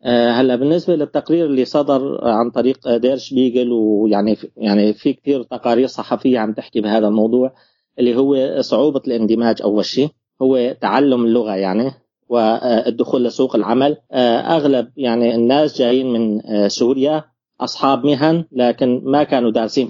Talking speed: 135 wpm